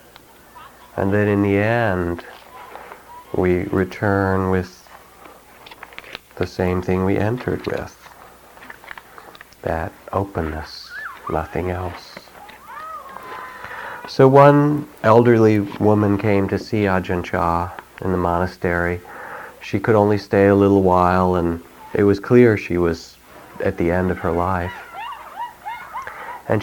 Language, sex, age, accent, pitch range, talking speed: English, male, 40-59, American, 90-115 Hz, 115 wpm